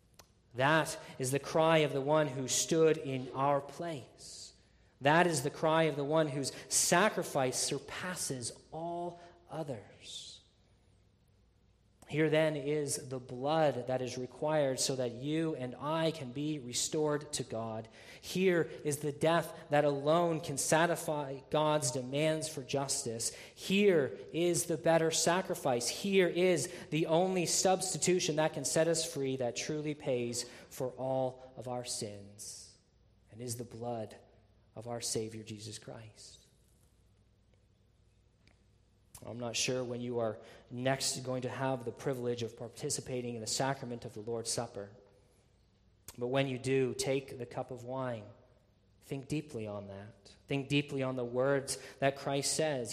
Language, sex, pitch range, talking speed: English, male, 110-150 Hz, 145 wpm